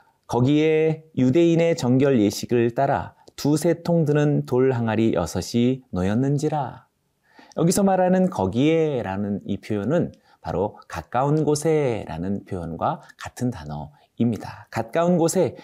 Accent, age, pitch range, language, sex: native, 30-49, 100-160 Hz, Korean, male